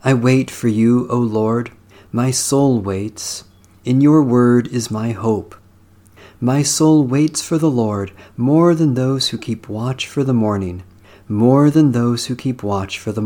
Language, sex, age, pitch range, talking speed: English, male, 40-59, 95-130 Hz, 170 wpm